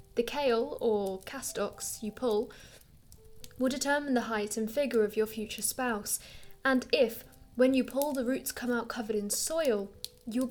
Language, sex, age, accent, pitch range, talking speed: English, female, 10-29, British, 215-260 Hz, 165 wpm